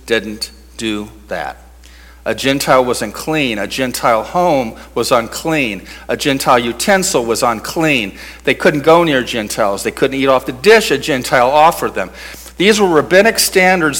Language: English